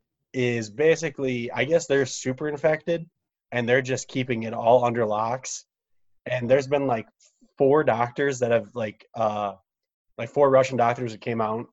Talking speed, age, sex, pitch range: 165 wpm, 20-39, male, 115-130 Hz